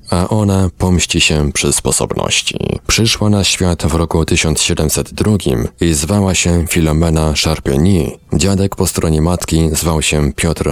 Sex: male